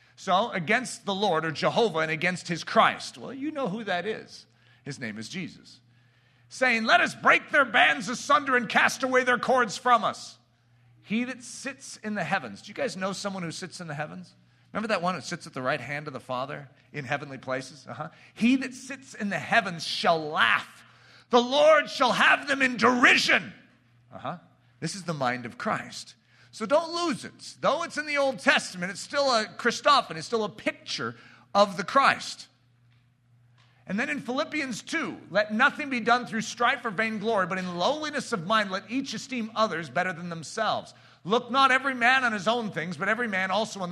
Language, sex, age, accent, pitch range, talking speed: English, male, 40-59, American, 160-245 Hz, 205 wpm